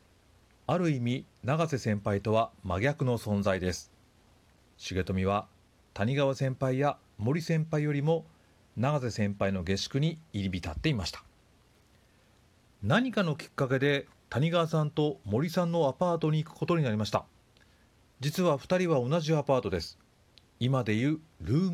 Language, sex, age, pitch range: Japanese, male, 40-59, 105-155 Hz